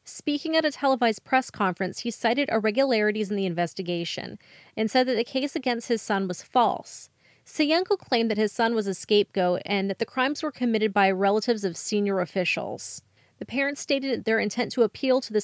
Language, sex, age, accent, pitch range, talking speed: English, female, 30-49, American, 195-245 Hz, 195 wpm